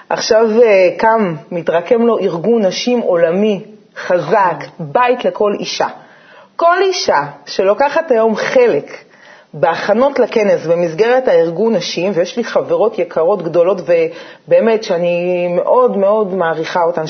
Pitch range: 180-285 Hz